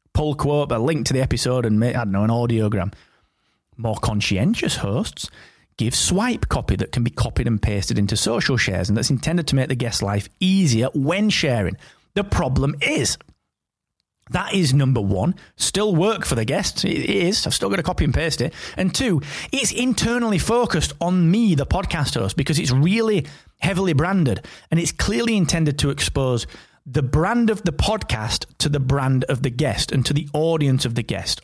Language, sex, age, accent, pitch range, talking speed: English, male, 30-49, British, 120-180 Hz, 195 wpm